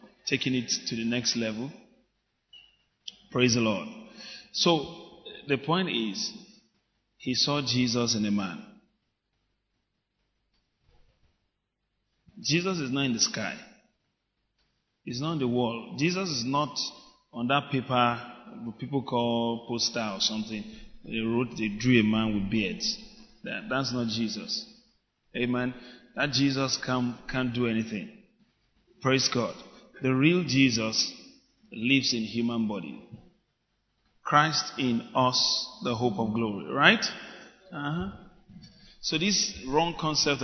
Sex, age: male, 30-49